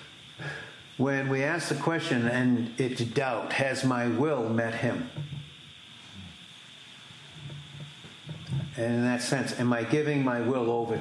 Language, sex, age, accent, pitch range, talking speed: English, male, 60-79, American, 120-150 Hz, 125 wpm